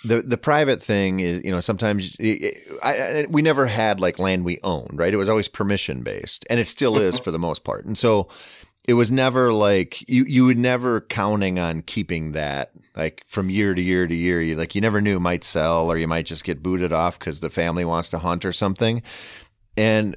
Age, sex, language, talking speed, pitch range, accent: 30-49, male, English, 230 wpm, 90-120 Hz, American